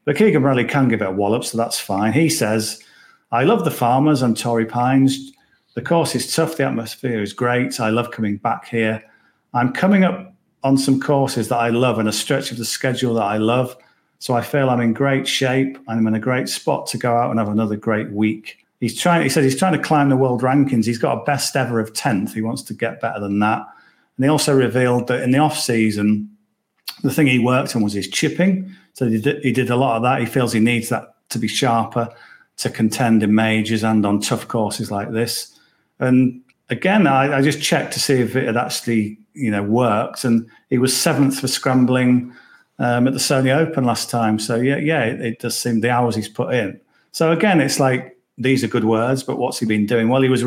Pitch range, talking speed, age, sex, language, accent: 115-135 Hz, 230 wpm, 40-59, male, English, British